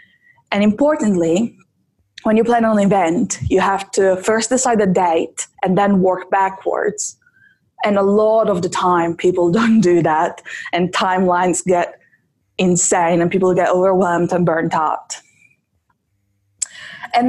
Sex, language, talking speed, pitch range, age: female, English, 140 wpm, 175-220 Hz, 20-39